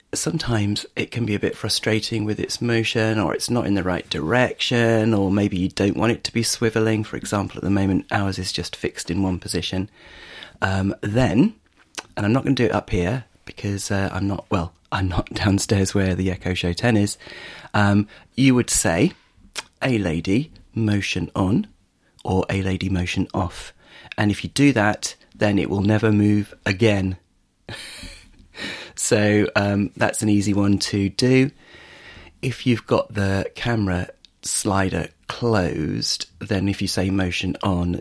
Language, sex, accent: English, male, British